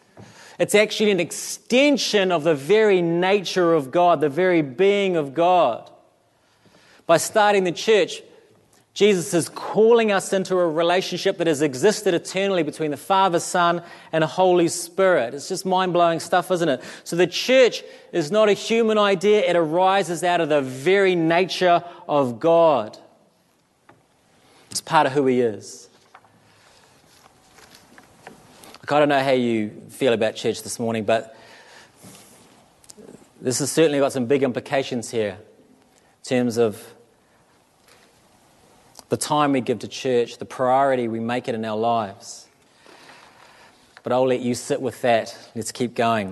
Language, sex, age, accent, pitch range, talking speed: English, male, 30-49, Australian, 125-185 Hz, 145 wpm